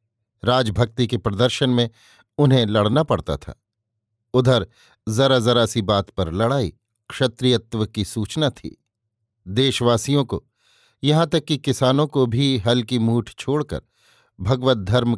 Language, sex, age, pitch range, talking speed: Hindi, male, 50-69, 110-130 Hz, 125 wpm